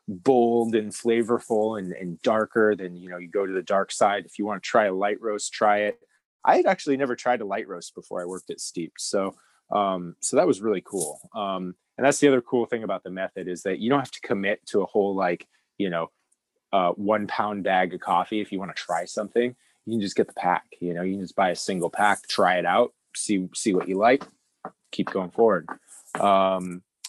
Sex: male